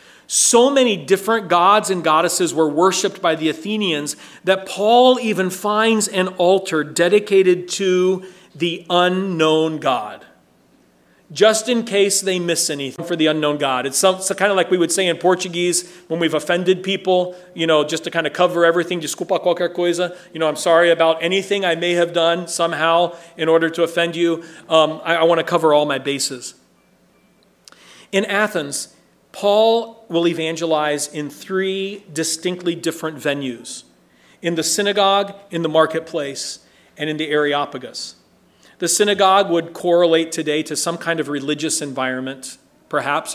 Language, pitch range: English, 155-185 Hz